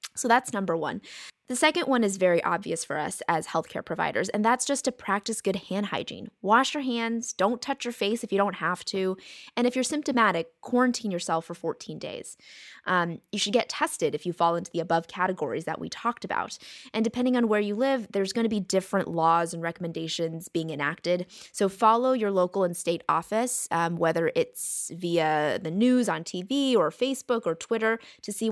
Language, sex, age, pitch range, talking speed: English, female, 20-39, 170-235 Hz, 200 wpm